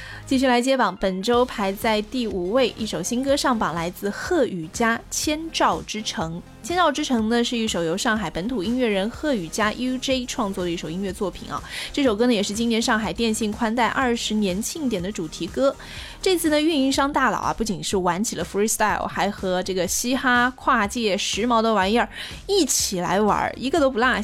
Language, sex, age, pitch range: Chinese, female, 20-39, 195-255 Hz